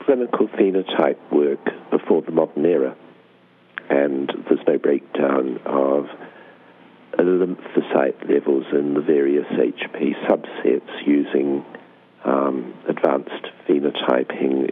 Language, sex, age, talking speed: English, male, 60-79, 95 wpm